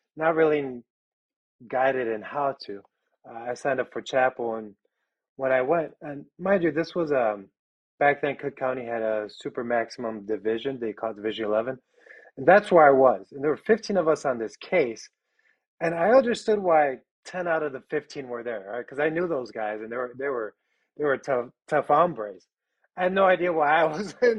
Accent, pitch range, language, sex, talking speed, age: American, 125-170 Hz, English, male, 210 wpm, 30-49